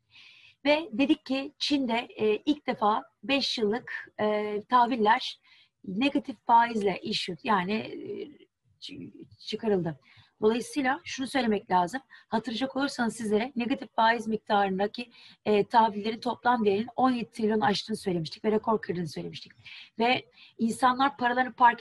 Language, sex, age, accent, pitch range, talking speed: Turkish, female, 30-49, native, 200-245 Hz, 105 wpm